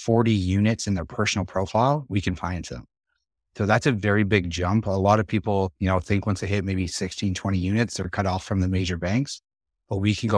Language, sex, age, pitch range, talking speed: English, male, 30-49, 90-110 Hz, 245 wpm